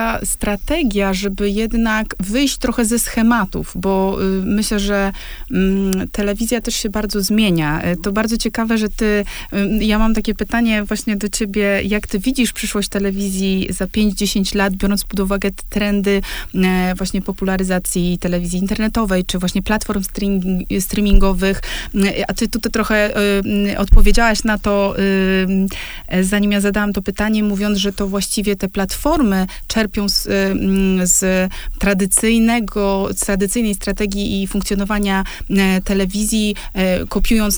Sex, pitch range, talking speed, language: female, 195-220 Hz, 135 wpm, Polish